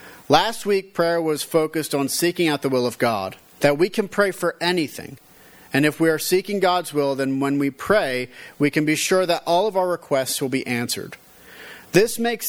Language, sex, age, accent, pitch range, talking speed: English, male, 40-59, American, 140-185 Hz, 205 wpm